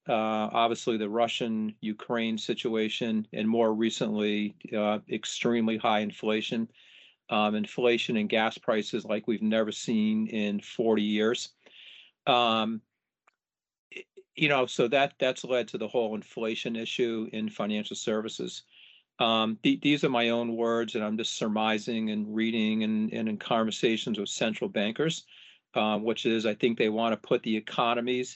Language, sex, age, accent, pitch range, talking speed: English, male, 50-69, American, 110-120 Hz, 150 wpm